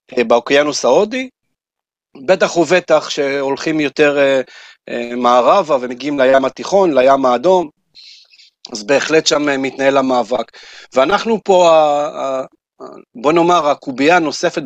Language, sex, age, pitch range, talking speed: Hebrew, male, 40-59, 135-175 Hz, 95 wpm